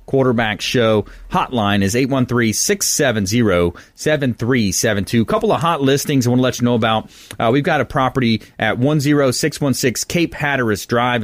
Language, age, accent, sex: English, 30-49, American, male